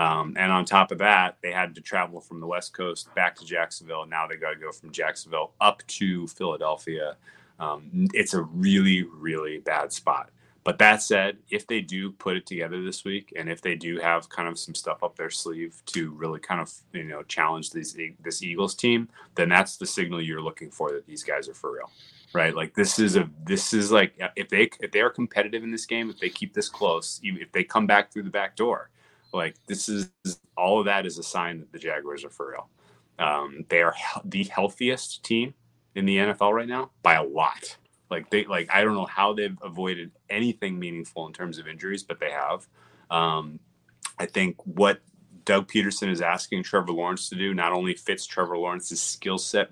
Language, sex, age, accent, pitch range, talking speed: English, male, 30-49, American, 85-115 Hz, 215 wpm